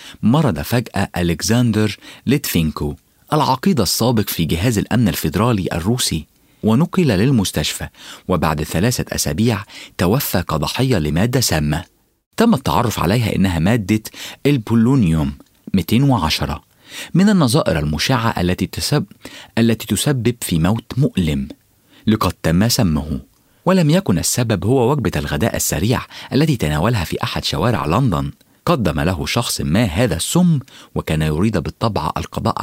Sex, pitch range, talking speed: male, 80-125 Hz, 115 wpm